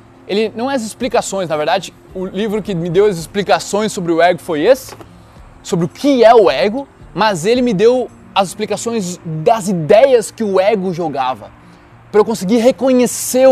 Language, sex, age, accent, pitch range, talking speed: Portuguese, male, 20-39, Brazilian, 130-195 Hz, 180 wpm